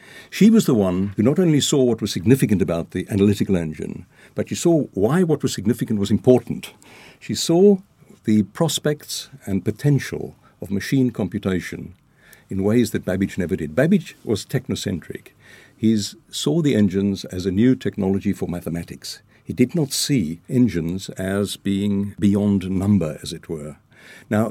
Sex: male